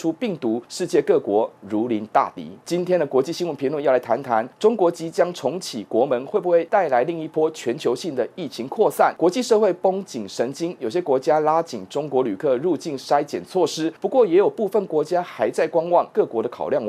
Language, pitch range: Chinese, 135-195 Hz